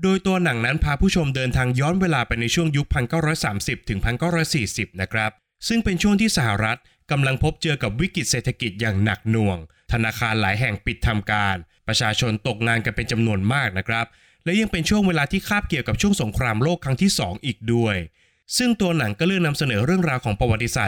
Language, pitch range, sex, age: Thai, 110-165 Hz, male, 20-39